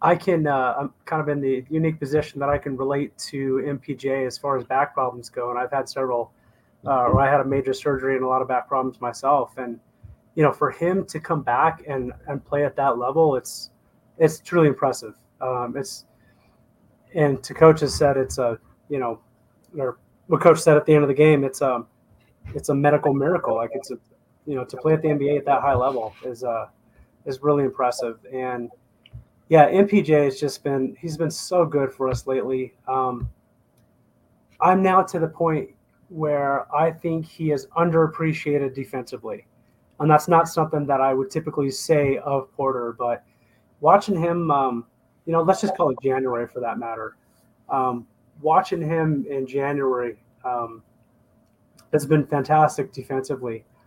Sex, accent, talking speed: male, American, 185 wpm